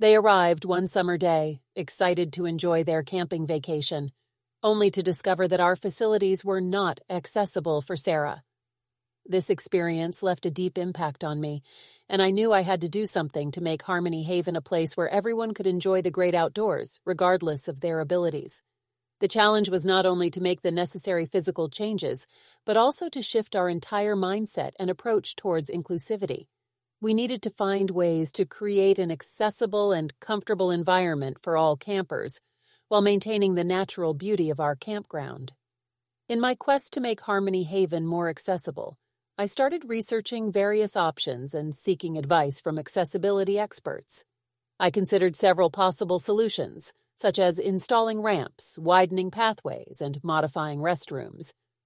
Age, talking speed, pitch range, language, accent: 40-59, 155 wpm, 160-200 Hz, English, American